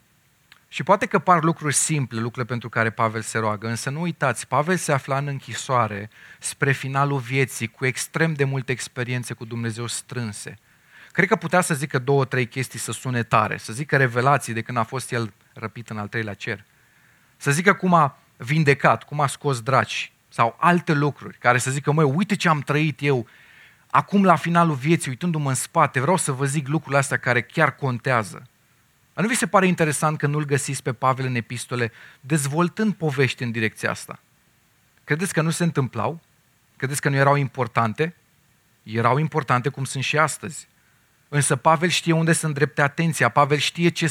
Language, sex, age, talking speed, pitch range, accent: Romanian, male, 30-49, 185 wpm, 125-155 Hz, native